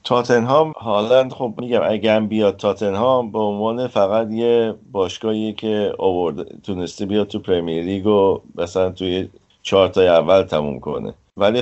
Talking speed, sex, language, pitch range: 145 wpm, male, Persian, 85-110 Hz